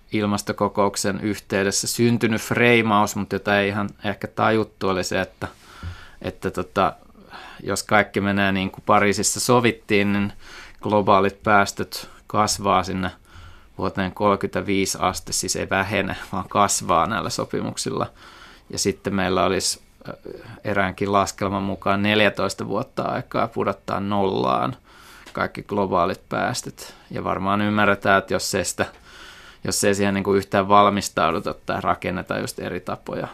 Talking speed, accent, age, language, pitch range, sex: 130 wpm, native, 20-39, Finnish, 95-105 Hz, male